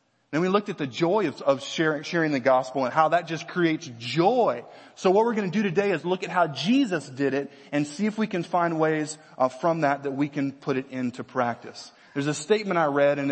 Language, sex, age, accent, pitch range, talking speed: English, male, 30-49, American, 145-180 Hz, 250 wpm